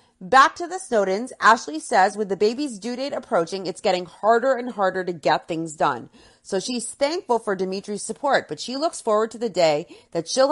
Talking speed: 205 wpm